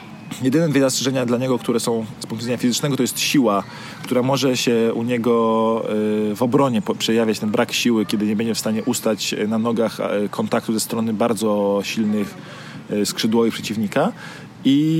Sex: male